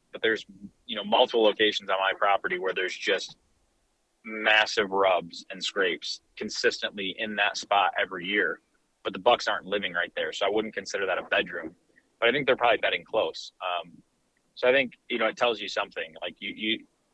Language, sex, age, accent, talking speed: English, male, 30-49, American, 195 wpm